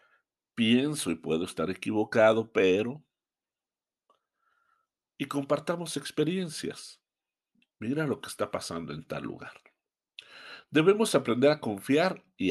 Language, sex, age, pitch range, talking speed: Spanish, male, 50-69, 105-155 Hz, 105 wpm